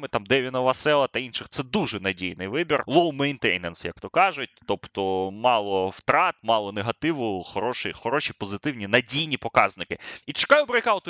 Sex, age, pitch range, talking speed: male, 20-39, 100-145 Hz, 145 wpm